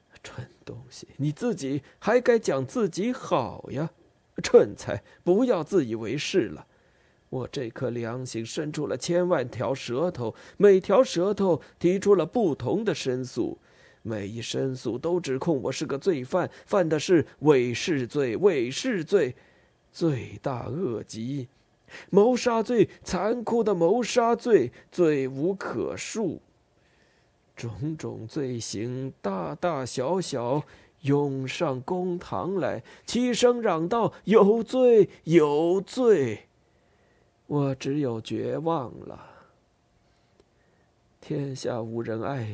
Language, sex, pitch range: Chinese, male, 125-195 Hz